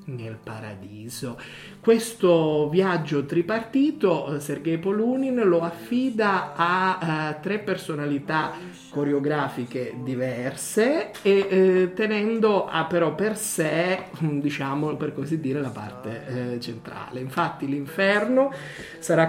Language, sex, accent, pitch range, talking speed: Italian, male, native, 140-190 Hz, 105 wpm